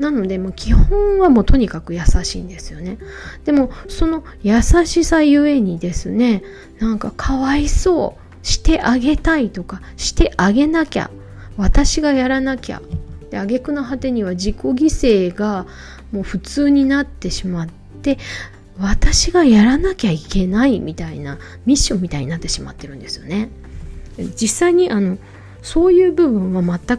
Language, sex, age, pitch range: Japanese, female, 20-39, 180-275 Hz